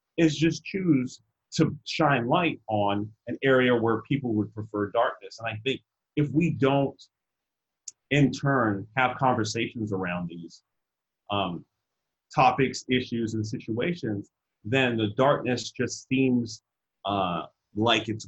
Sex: male